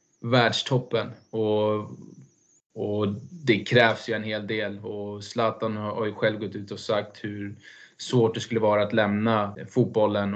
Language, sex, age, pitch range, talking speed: Swedish, male, 20-39, 105-115 Hz, 150 wpm